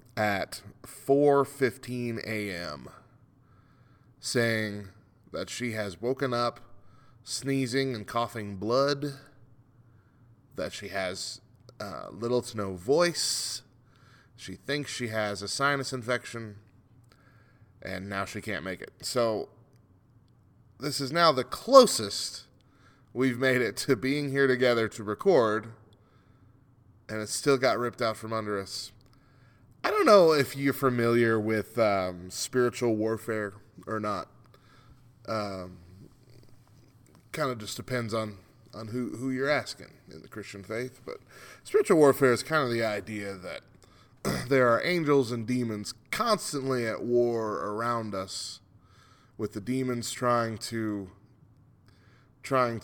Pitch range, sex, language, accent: 105-130 Hz, male, English, American